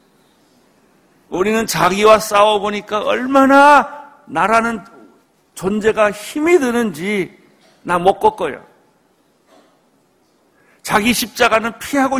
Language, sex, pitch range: Korean, male, 155-250 Hz